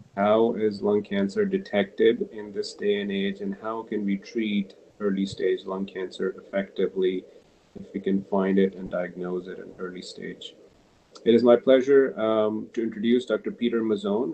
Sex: male